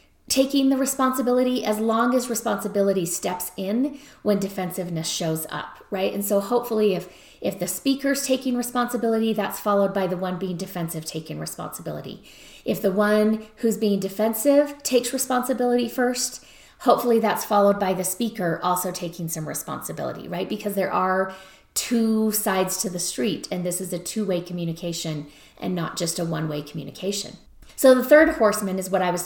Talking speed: 165 wpm